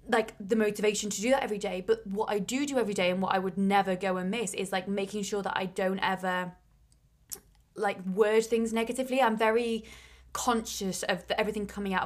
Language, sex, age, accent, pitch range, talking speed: English, female, 20-39, British, 185-215 Hz, 210 wpm